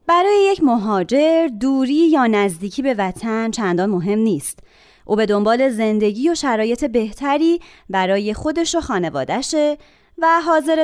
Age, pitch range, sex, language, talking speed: 30-49, 195-290 Hz, female, Persian, 135 wpm